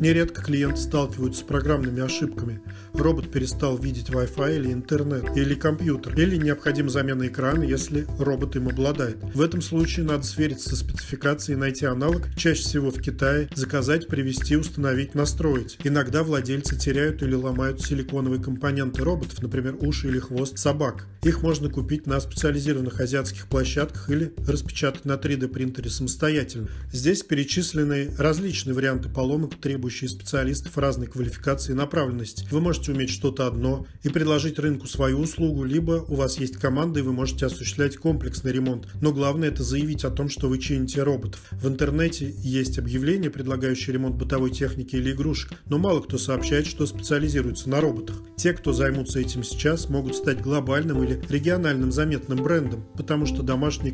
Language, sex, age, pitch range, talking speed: Russian, male, 40-59, 130-150 Hz, 155 wpm